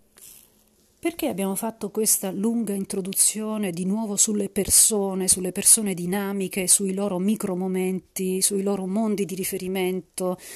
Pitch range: 180-215 Hz